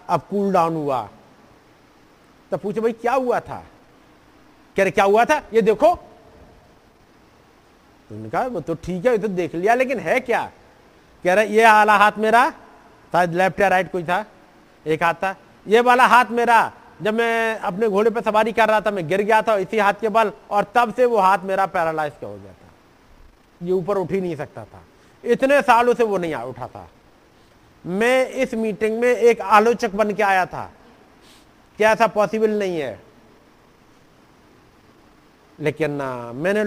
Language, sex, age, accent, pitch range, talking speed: Hindi, male, 40-59, native, 155-230 Hz, 165 wpm